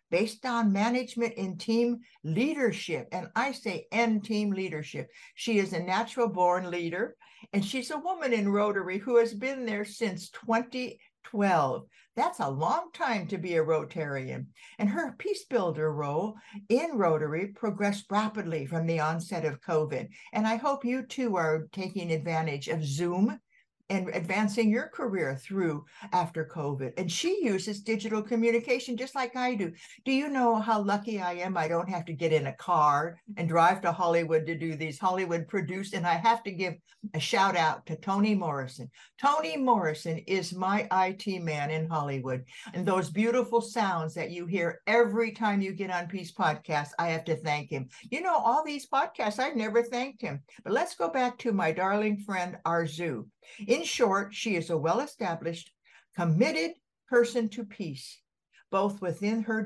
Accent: American